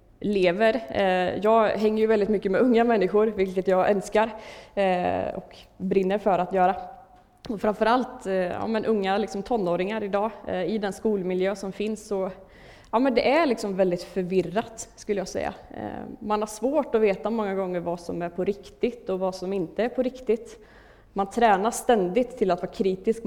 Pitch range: 185-225 Hz